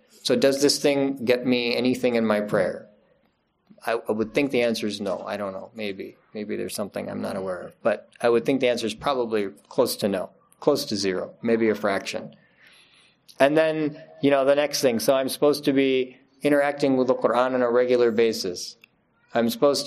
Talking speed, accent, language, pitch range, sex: 200 wpm, American, English, 115-140 Hz, male